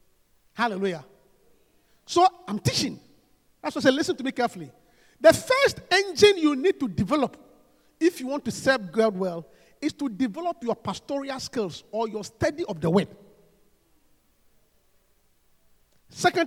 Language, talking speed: English, 140 wpm